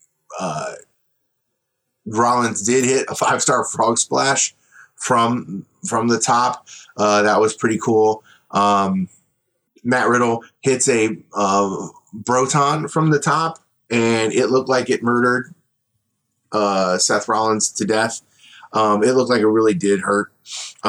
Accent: American